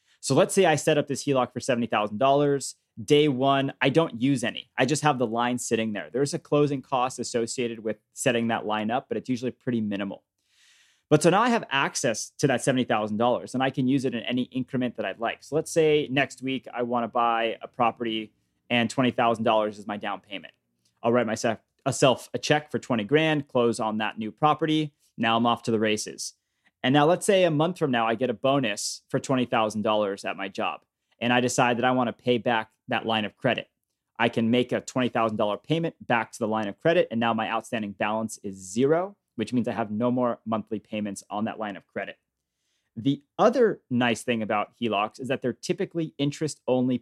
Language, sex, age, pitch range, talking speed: English, male, 30-49, 110-140 Hz, 215 wpm